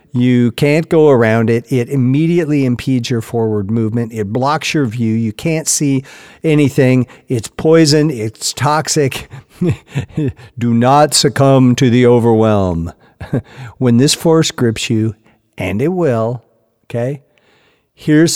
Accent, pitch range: American, 115-150 Hz